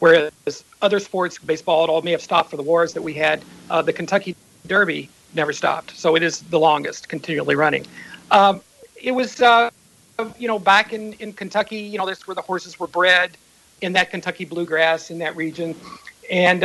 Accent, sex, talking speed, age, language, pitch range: American, male, 195 wpm, 50-69, English, 160-200 Hz